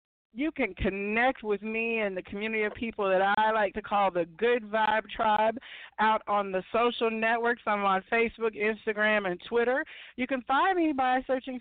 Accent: American